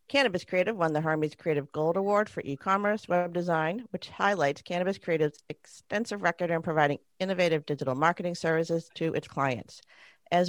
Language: English